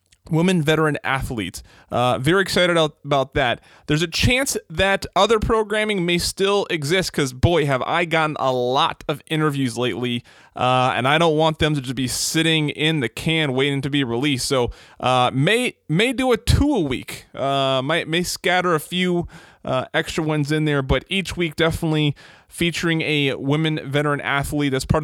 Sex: male